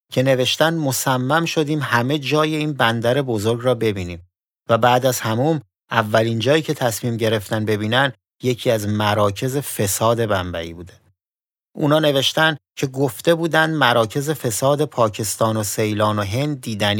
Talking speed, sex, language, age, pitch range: 140 wpm, male, Persian, 30-49, 105-140 Hz